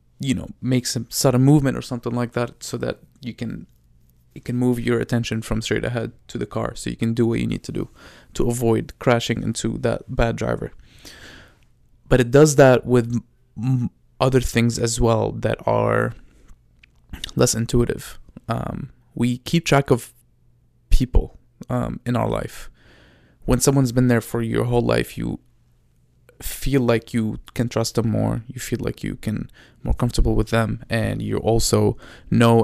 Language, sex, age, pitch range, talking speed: English, male, 20-39, 115-125 Hz, 170 wpm